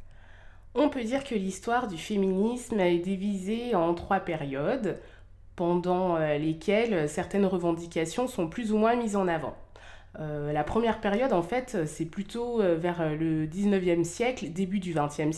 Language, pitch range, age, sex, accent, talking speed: French, 160-200 Hz, 20-39, female, French, 150 wpm